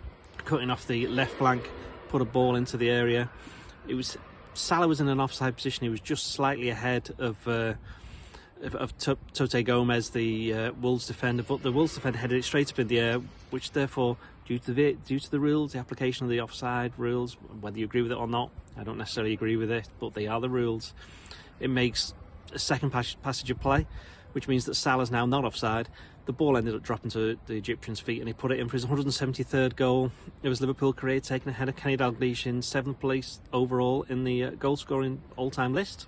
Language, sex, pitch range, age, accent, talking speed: English, male, 115-135 Hz, 30-49, British, 215 wpm